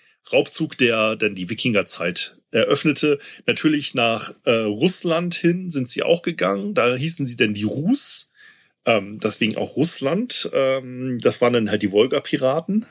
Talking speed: 155 wpm